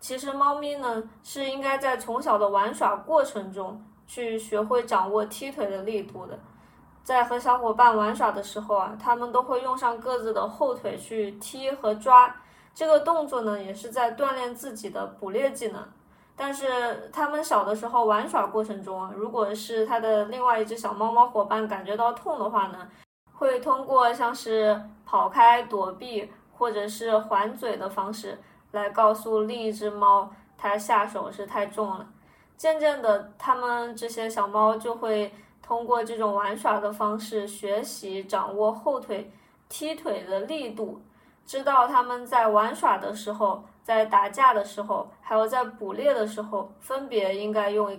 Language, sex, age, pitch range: Chinese, female, 20-39, 205-245 Hz